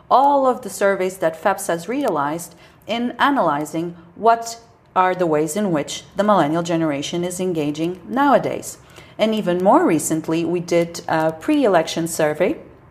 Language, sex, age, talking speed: English, female, 40-59, 145 wpm